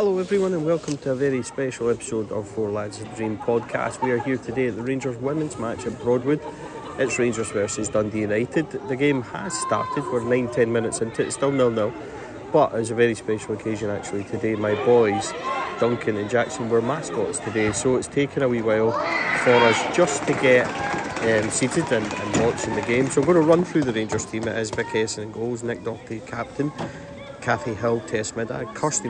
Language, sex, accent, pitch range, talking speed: English, male, British, 110-125 Hz, 205 wpm